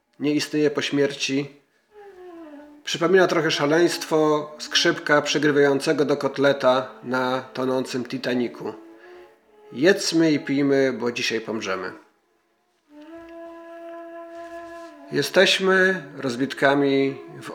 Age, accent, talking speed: 40-59, native, 80 wpm